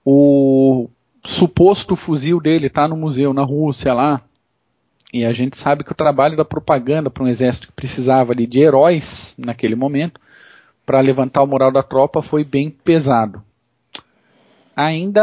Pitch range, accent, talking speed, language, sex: 140-180 Hz, Brazilian, 155 wpm, Portuguese, male